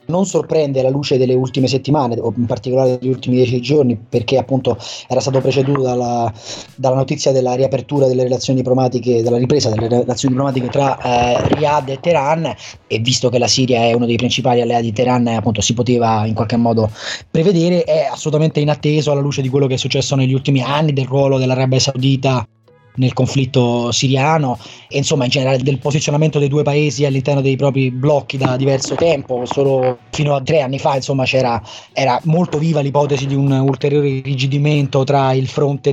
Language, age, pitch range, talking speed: Italian, 20-39, 125-145 Hz, 185 wpm